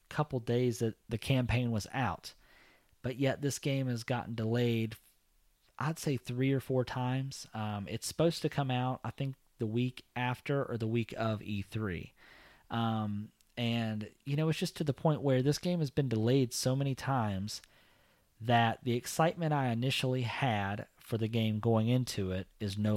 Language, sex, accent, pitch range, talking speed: English, male, American, 100-125 Hz, 180 wpm